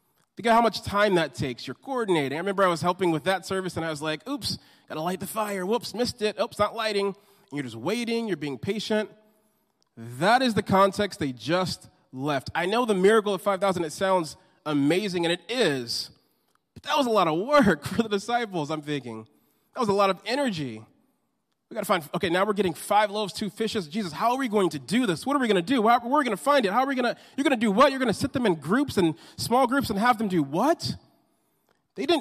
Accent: American